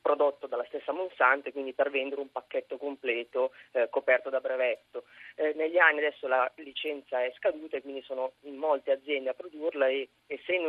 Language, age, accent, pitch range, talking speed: Italian, 30-49, native, 135-170 Hz, 180 wpm